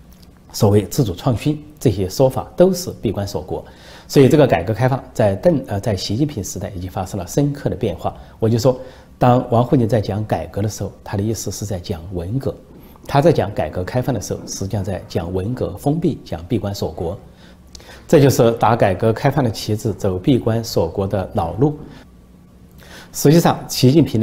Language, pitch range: Chinese, 95-125 Hz